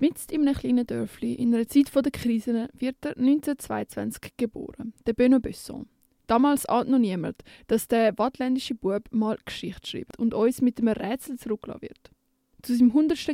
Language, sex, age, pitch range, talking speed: German, female, 20-39, 215-260 Hz, 170 wpm